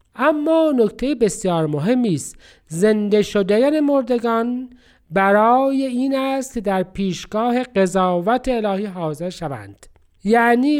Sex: male